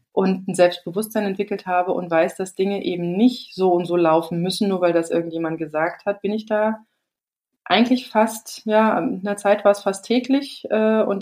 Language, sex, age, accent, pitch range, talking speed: German, female, 30-49, German, 175-215 Hz, 195 wpm